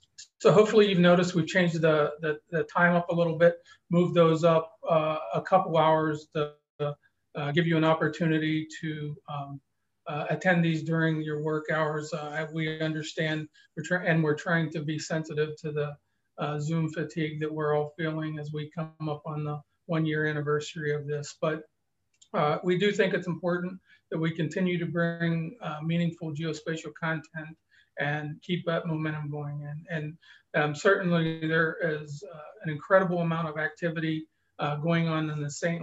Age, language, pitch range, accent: 40-59, English, 150-170 Hz, American